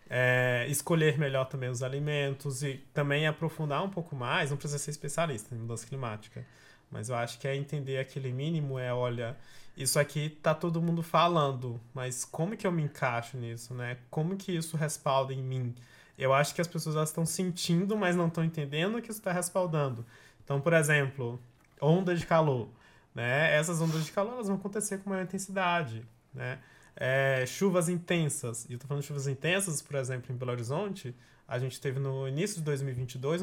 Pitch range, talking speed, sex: 135-185 Hz, 190 wpm, male